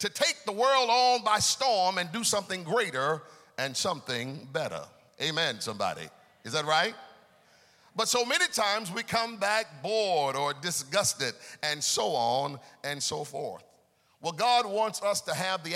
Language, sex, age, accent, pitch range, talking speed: English, male, 50-69, American, 145-215 Hz, 160 wpm